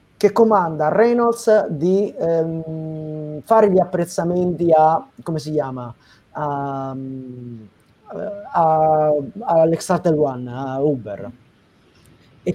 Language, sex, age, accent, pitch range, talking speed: Italian, male, 30-49, native, 155-205 Hz, 80 wpm